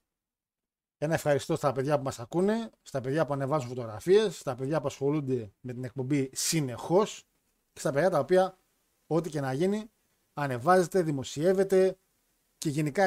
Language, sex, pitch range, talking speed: Greek, male, 135-180 Hz, 150 wpm